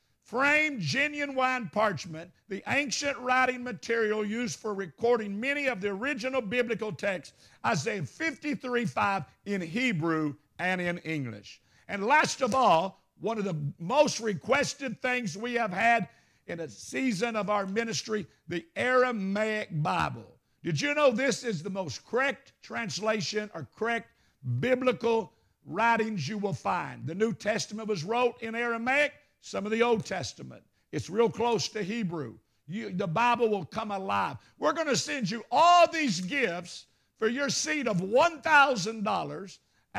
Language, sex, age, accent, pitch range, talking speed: English, male, 60-79, American, 175-250 Hz, 145 wpm